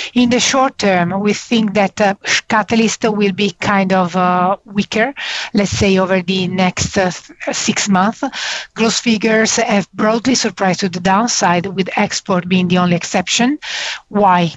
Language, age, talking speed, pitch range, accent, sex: English, 40-59, 155 wpm, 185-220 Hz, Italian, female